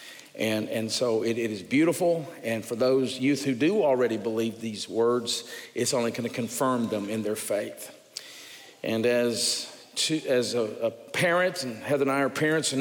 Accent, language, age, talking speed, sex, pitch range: American, English, 50-69, 185 wpm, male, 115-135 Hz